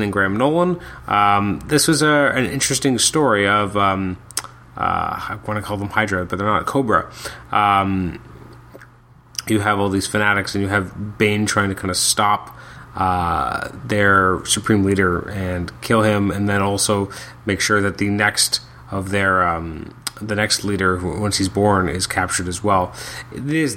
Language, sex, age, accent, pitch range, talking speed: English, male, 30-49, American, 100-120 Hz, 170 wpm